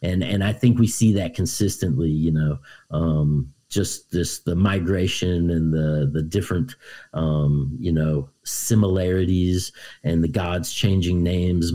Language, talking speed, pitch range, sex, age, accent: English, 145 wpm, 80-105 Hz, male, 40-59, American